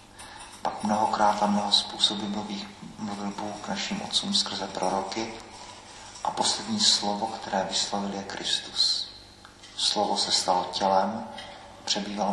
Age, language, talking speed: 40-59, Czech, 115 wpm